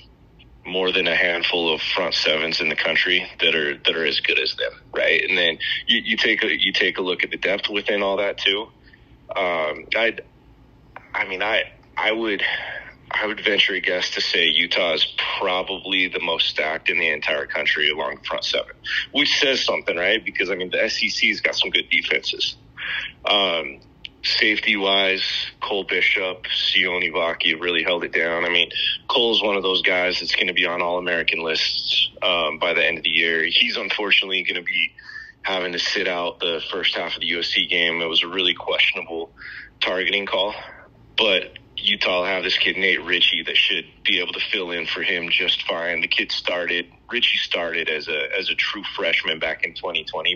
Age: 30-49